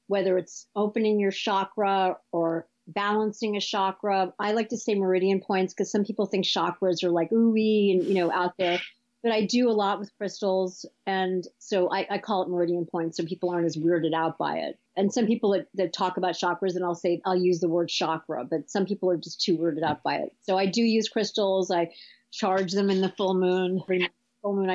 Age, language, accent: 40-59, English, American